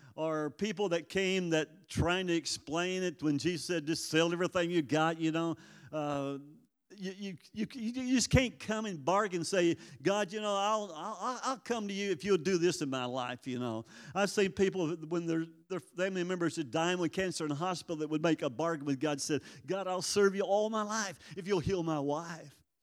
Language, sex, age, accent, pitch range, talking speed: English, male, 50-69, American, 160-200 Hz, 225 wpm